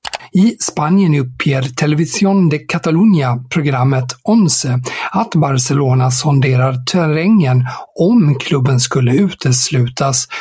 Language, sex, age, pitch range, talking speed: Swedish, male, 60-79, 130-165 Hz, 85 wpm